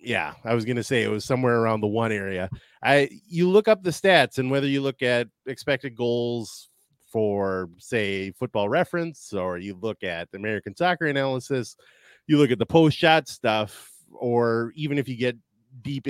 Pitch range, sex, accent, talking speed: 105-140 Hz, male, American, 185 wpm